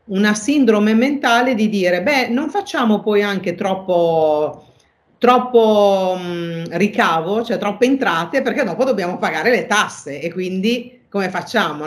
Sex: female